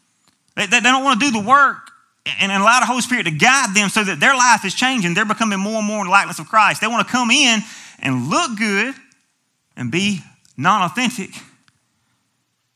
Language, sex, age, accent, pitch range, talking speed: English, male, 30-49, American, 160-230 Hz, 200 wpm